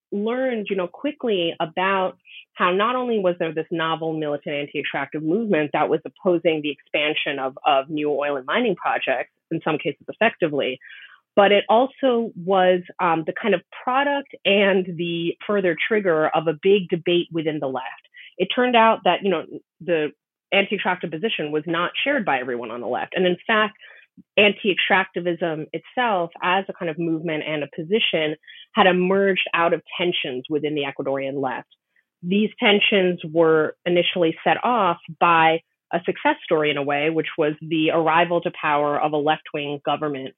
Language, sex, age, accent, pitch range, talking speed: English, female, 30-49, American, 155-195 Hz, 170 wpm